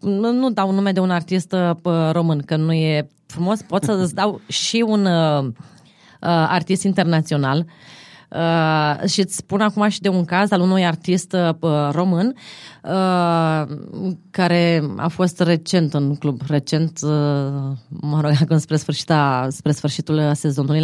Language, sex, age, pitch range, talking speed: Romanian, female, 20-39, 155-200 Hz, 130 wpm